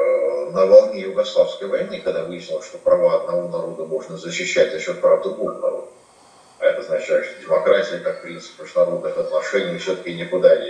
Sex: male